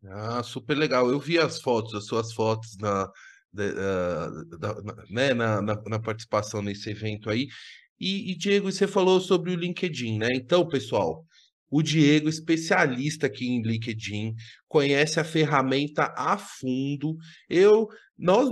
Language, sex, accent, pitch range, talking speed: Portuguese, male, Brazilian, 120-175 Hz, 125 wpm